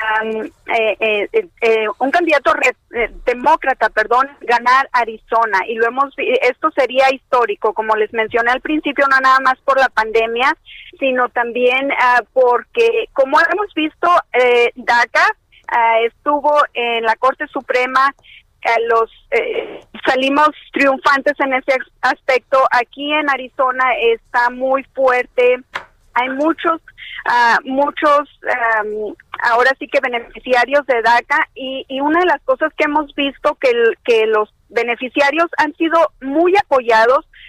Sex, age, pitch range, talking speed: female, 30-49, 235-300 Hz, 140 wpm